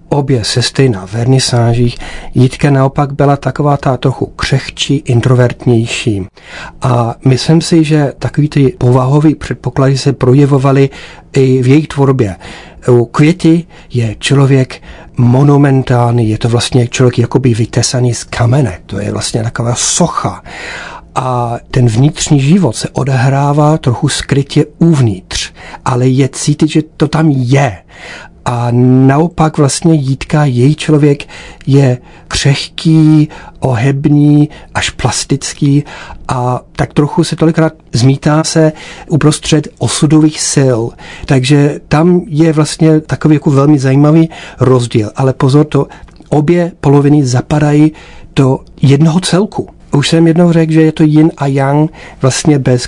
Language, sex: Czech, male